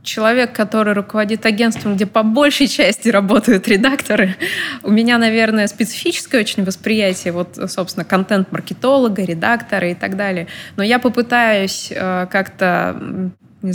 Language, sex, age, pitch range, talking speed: English, female, 20-39, 190-235 Hz, 125 wpm